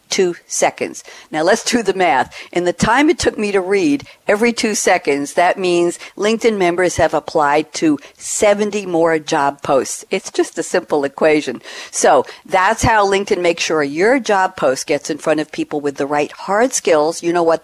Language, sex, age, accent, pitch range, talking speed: English, female, 60-79, American, 155-205 Hz, 190 wpm